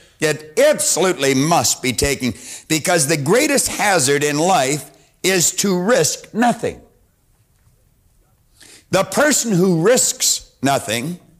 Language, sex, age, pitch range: English, male, 60-79, 110-180 Hz